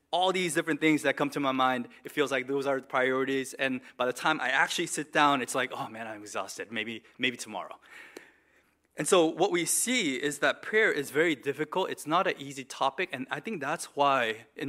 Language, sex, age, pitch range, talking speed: English, male, 20-39, 130-155 Hz, 225 wpm